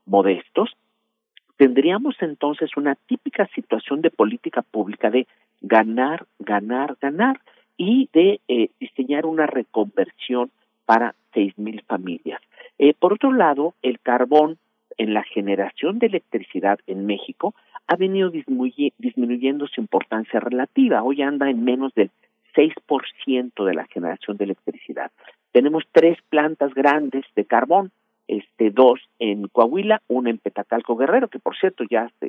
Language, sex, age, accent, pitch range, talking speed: Spanish, male, 50-69, Mexican, 115-190 Hz, 135 wpm